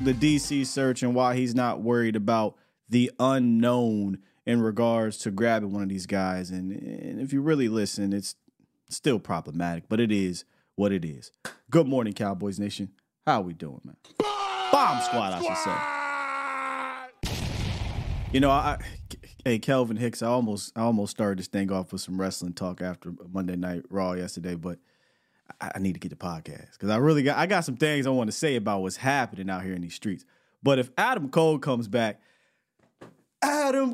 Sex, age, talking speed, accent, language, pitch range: male, 30-49, 185 wpm, American, English, 95-135 Hz